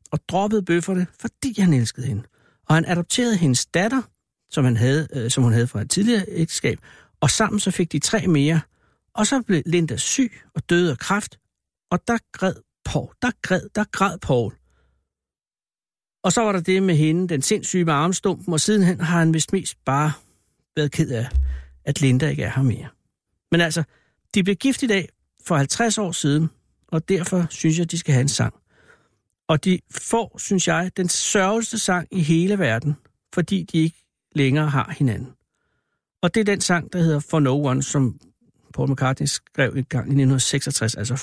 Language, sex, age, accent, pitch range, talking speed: Danish, male, 60-79, native, 125-175 Hz, 190 wpm